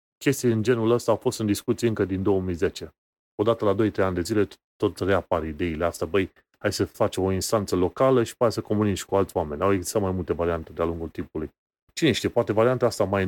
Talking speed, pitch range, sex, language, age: 220 wpm, 95-115 Hz, male, Romanian, 30-49